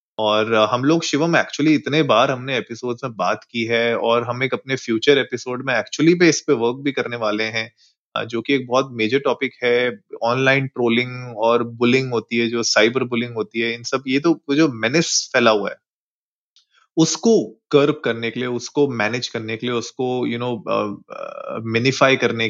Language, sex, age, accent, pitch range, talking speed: Hindi, male, 30-49, native, 115-135 Hz, 140 wpm